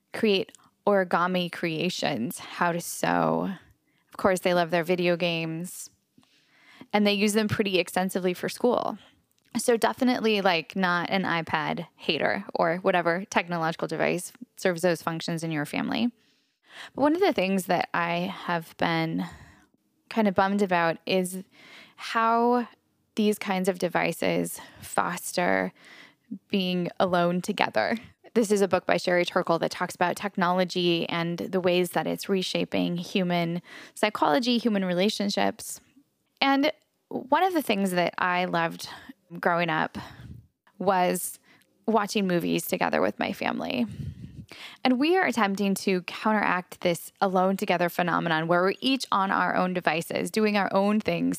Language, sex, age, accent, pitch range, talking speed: English, female, 10-29, American, 175-220 Hz, 140 wpm